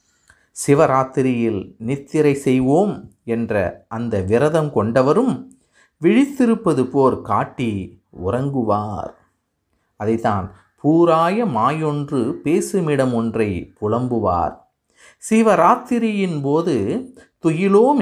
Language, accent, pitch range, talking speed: Tamil, native, 110-160 Hz, 65 wpm